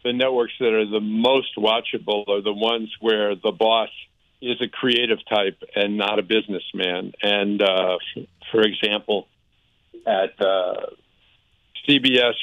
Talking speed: 135 wpm